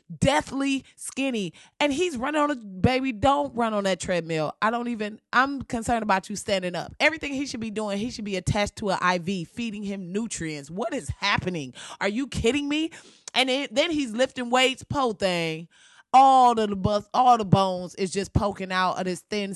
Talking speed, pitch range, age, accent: 200 wpm, 205-295 Hz, 20-39, American